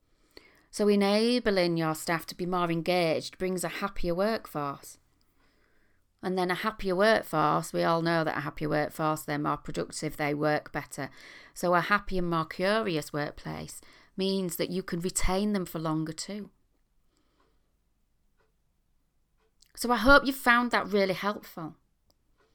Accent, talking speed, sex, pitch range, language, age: British, 145 wpm, female, 170-225 Hz, English, 40-59